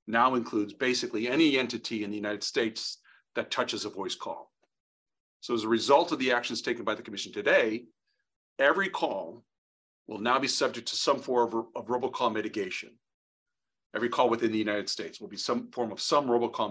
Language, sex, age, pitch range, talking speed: English, male, 40-59, 115-140 Hz, 185 wpm